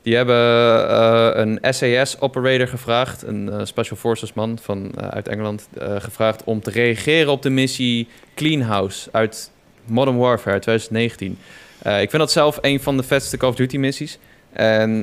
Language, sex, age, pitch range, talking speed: Dutch, male, 20-39, 115-135 Hz, 170 wpm